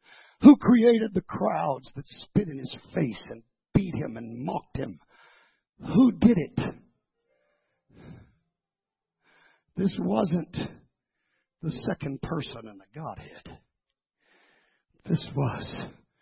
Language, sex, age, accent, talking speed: English, male, 60-79, American, 105 wpm